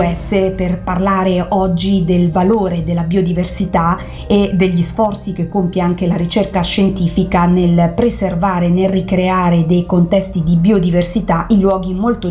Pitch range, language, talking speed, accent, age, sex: 175-210 Hz, Italian, 130 wpm, native, 40-59, female